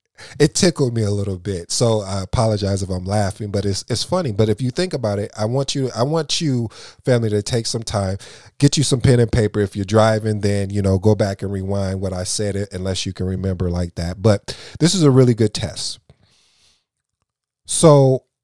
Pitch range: 95-120 Hz